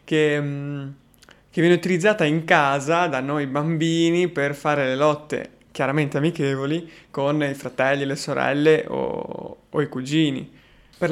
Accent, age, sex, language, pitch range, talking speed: native, 20-39, male, Italian, 145-175 Hz, 135 wpm